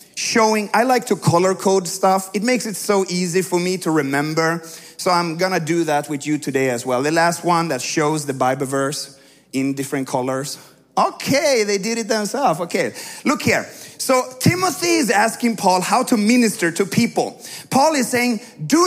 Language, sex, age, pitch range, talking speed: English, male, 30-49, 180-265 Hz, 190 wpm